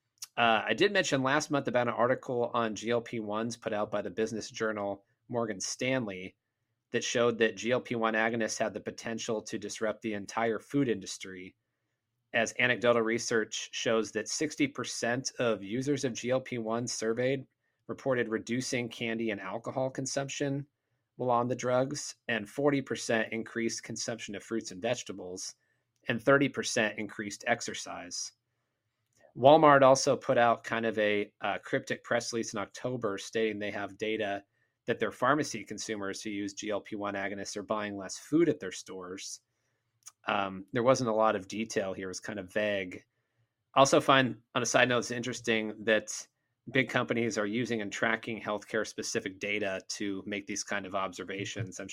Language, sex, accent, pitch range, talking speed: English, male, American, 105-120 Hz, 155 wpm